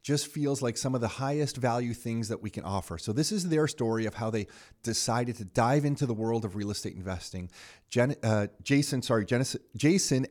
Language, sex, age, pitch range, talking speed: English, male, 30-49, 110-135 Hz, 215 wpm